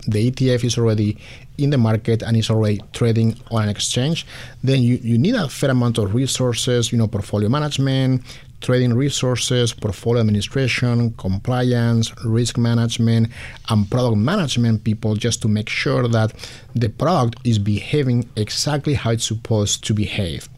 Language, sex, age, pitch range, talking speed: English, male, 50-69, 110-130 Hz, 155 wpm